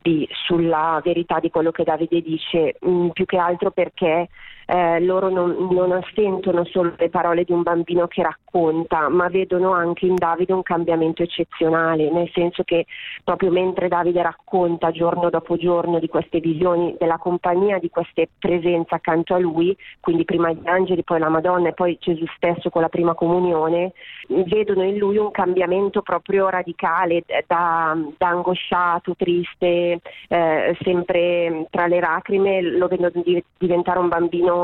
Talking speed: 160 wpm